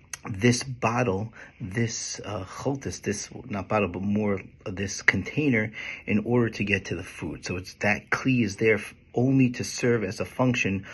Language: English